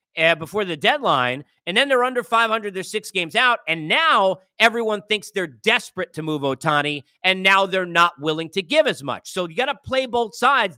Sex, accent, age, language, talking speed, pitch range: male, American, 40-59, English, 205 wpm, 165-235 Hz